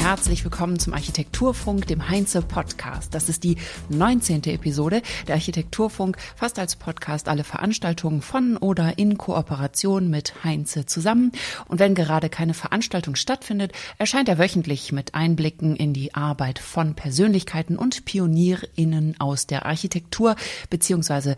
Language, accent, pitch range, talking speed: German, German, 155-195 Hz, 130 wpm